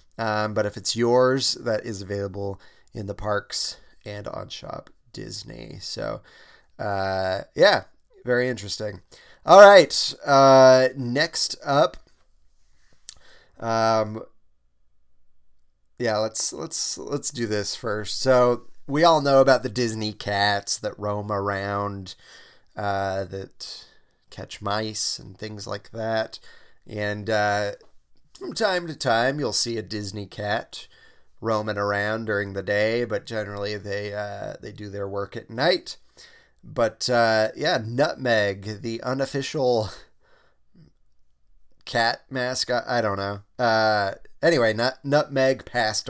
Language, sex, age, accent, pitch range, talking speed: English, male, 20-39, American, 100-115 Hz, 120 wpm